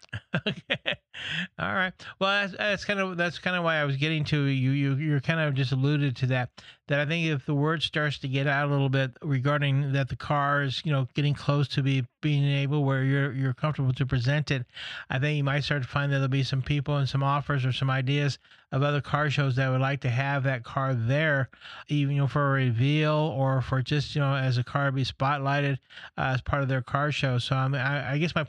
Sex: male